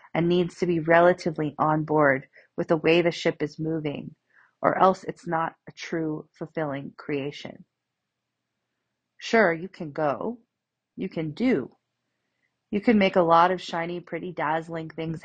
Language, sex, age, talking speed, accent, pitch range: English, female, 30-49, 155 wpm, American, 150-175 Hz